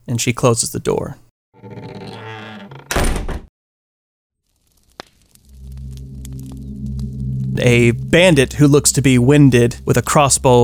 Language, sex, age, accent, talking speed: English, male, 30-49, American, 85 wpm